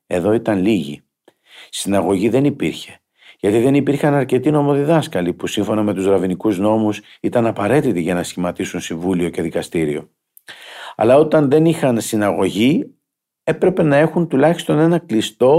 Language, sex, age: Greek, male, 50-69